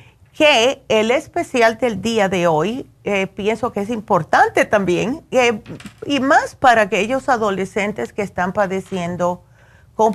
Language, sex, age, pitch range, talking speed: Spanish, female, 40-59, 180-240 Hz, 135 wpm